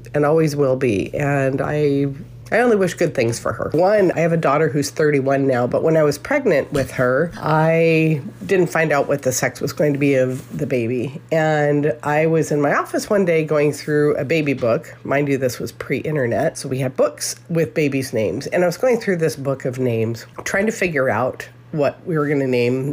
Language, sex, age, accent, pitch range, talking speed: English, female, 40-59, American, 135-170 Hz, 220 wpm